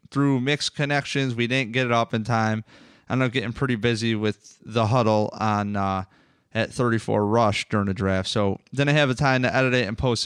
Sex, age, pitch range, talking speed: male, 30-49, 105-130 Hz, 205 wpm